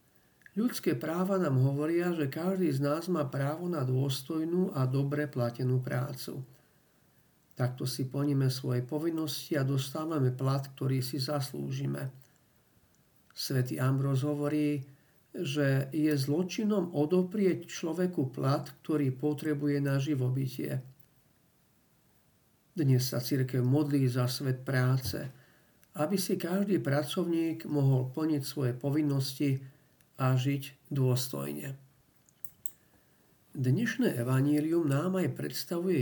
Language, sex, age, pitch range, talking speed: Slovak, male, 50-69, 130-150 Hz, 105 wpm